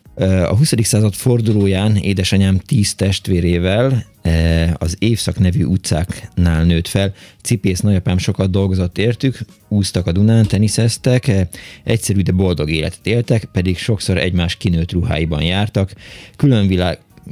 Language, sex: Hungarian, male